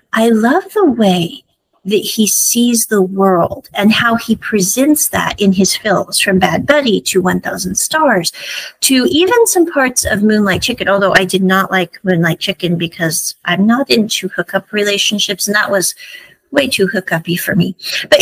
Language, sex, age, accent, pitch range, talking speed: English, female, 40-59, American, 190-270 Hz, 170 wpm